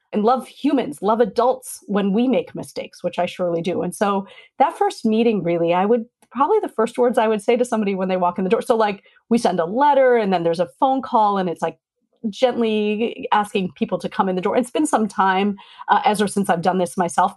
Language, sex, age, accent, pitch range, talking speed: English, female, 40-59, American, 180-235 Hz, 245 wpm